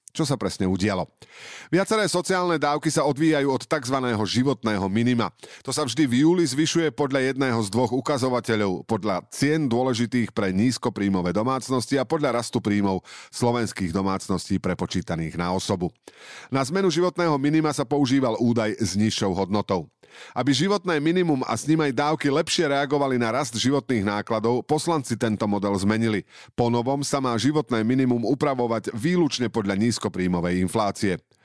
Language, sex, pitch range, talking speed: Slovak, male, 105-145 Hz, 145 wpm